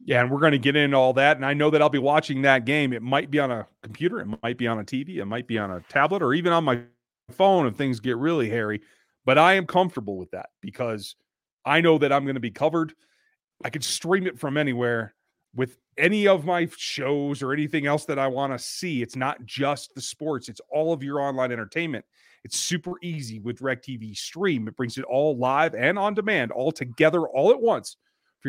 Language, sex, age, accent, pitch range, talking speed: English, male, 30-49, American, 125-165 Hz, 235 wpm